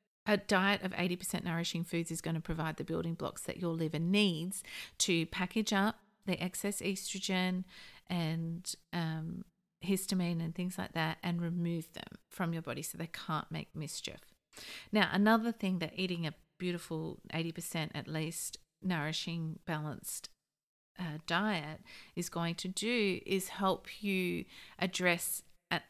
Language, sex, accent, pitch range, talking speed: English, female, Australian, 165-195 Hz, 150 wpm